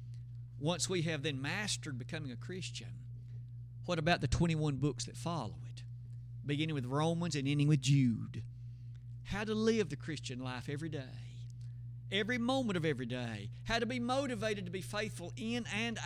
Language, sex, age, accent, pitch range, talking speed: English, male, 50-69, American, 120-155 Hz, 170 wpm